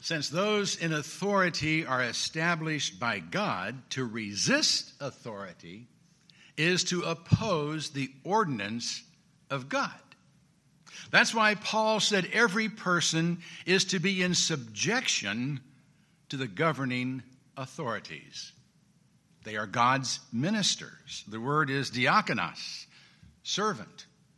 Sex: male